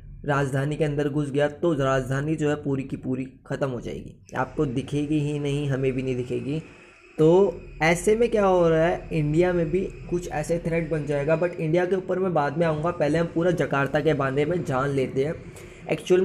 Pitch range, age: 140-170 Hz, 20-39